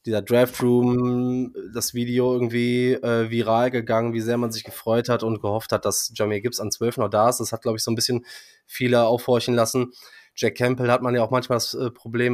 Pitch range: 120-135 Hz